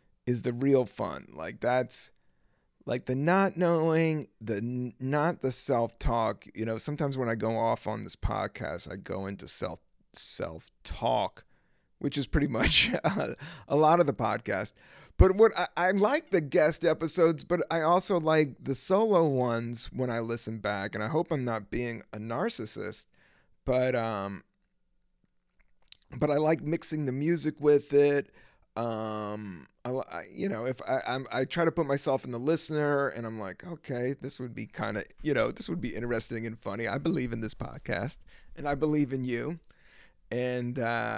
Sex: male